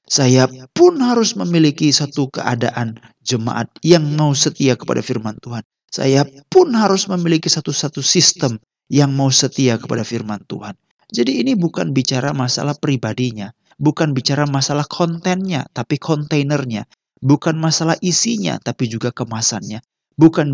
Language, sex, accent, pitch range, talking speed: Indonesian, male, native, 115-150 Hz, 130 wpm